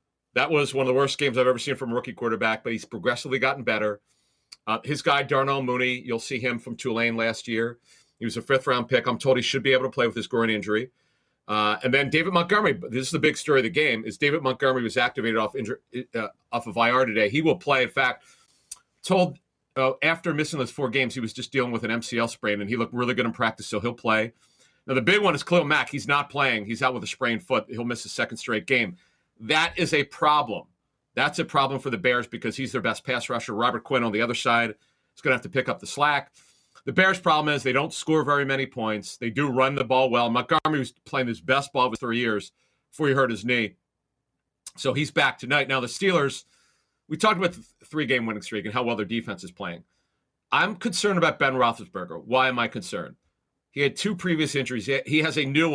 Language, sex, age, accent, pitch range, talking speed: English, male, 40-59, American, 115-140 Hz, 240 wpm